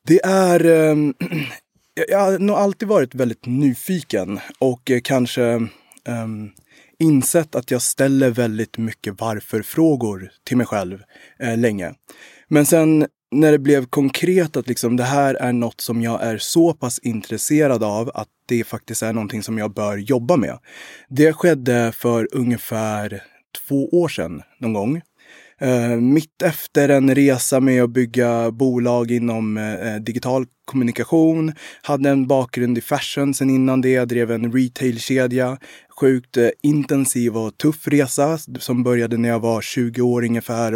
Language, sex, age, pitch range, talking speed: Swedish, male, 20-39, 115-145 Hz, 150 wpm